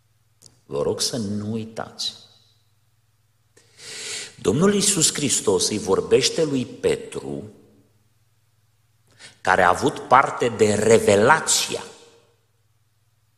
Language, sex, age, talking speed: Romanian, male, 50-69, 80 wpm